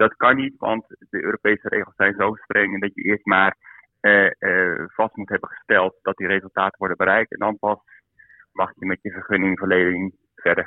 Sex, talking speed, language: male, 195 wpm, Dutch